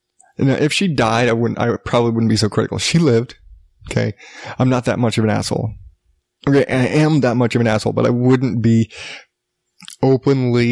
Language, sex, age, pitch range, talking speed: English, male, 20-39, 110-130 Hz, 195 wpm